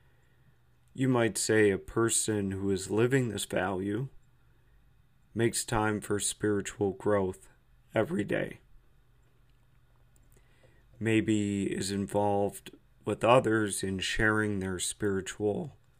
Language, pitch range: English, 100-125 Hz